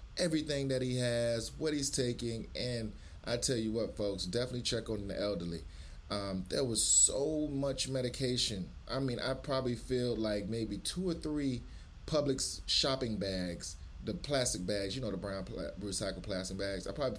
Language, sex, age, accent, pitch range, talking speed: English, male, 30-49, American, 105-145 Hz, 175 wpm